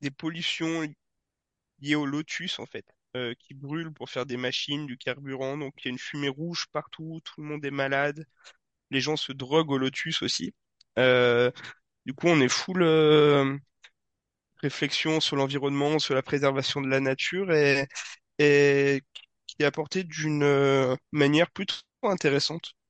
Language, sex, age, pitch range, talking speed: French, male, 20-39, 130-155 Hz, 160 wpm